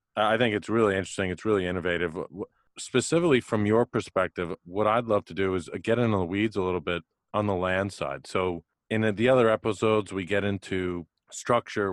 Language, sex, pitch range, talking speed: English, male, 90-105 Hz, 190 wpm